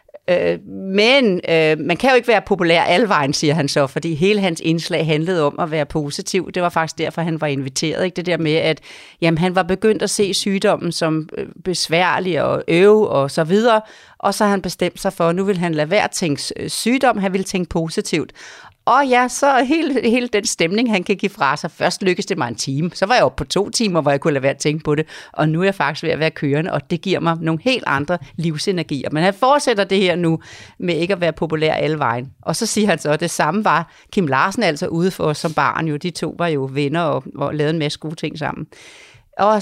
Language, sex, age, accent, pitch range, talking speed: Danish, female, 40-59, native, 150-200 Hz, 250 wpm